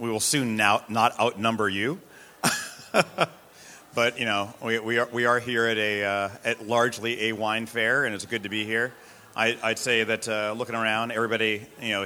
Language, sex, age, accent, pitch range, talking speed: English, male, 40-59, American, 105-120 Hz, 200 wpm